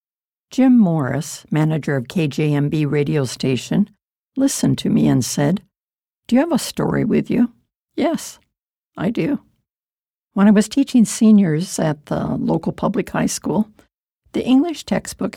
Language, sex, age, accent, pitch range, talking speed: English, female, 60-79, American, 180-235 Hz, 140 wpm